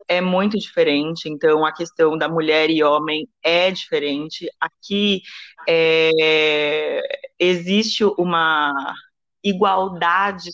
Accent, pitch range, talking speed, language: Brazilian, 165-200 Hz, 95 wpm, Portuguese